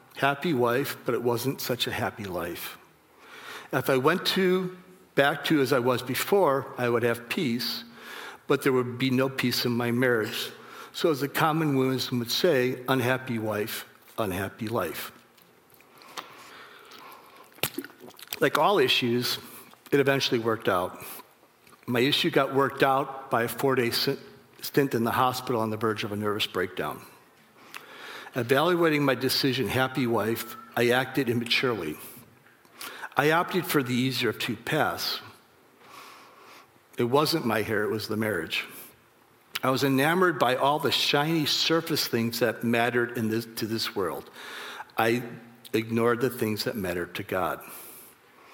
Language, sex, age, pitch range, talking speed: English, male, 60-79, 120-140 Hz, 145 wpm